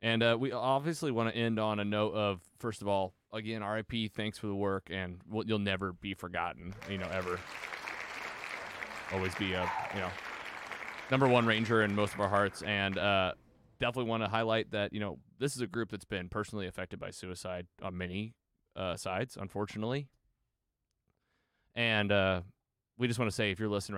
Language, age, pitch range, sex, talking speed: English, 30-49, 100-115 Hz, male, 190 wpm